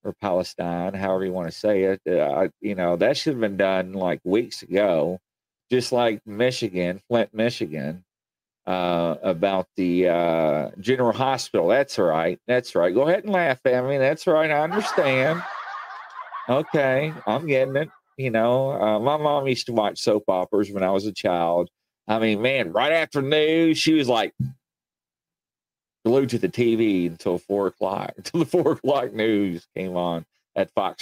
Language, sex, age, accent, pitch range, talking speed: English, male, 40-59, American, 95-155 Hz, 170 wpm